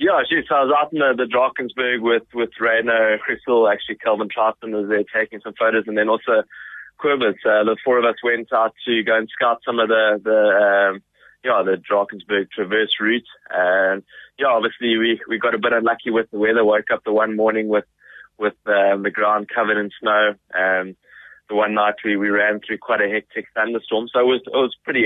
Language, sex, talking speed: English, male, 210 wpm